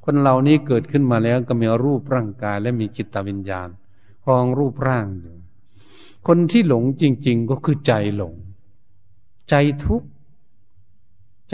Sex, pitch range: male, 100-140 Hz